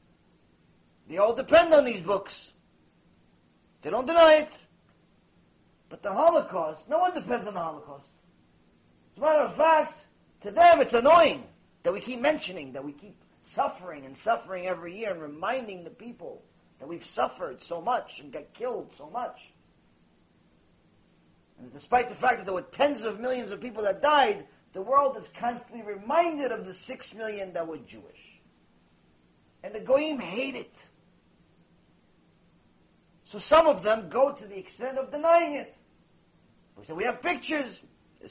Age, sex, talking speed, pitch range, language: 30-49, male, 160 wpm, 190-290 Hz, English